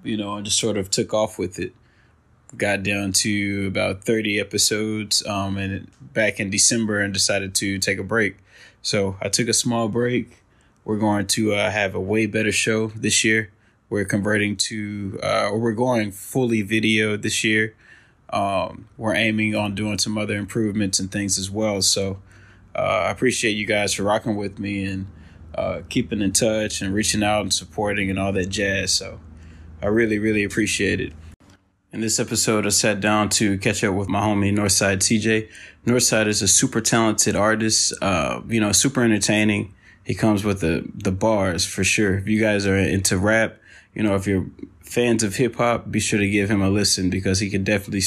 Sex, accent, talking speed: male, American, 195 wpm